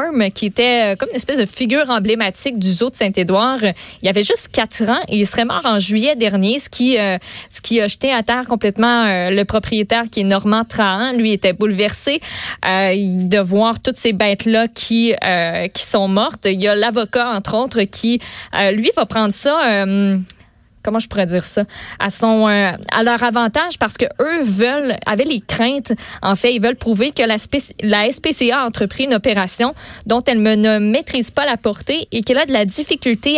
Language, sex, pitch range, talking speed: French, female, 205-245 Hz, 200 wpm